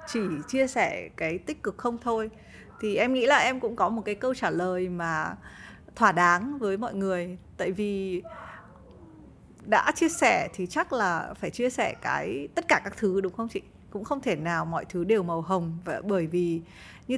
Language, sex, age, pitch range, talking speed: Vietnamese, female, 20-39, 185-235 Hz, 205 wpm